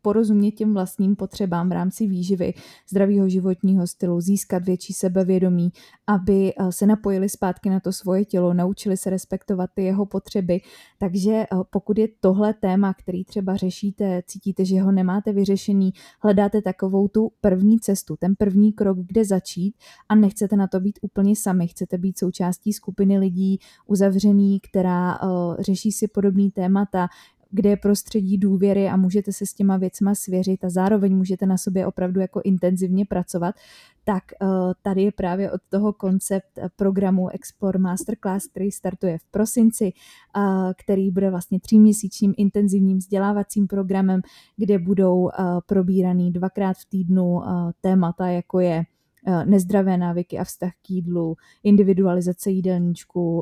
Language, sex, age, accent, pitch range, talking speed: Czech, female, 20-39, native, 185-200 Hz, 140 wpm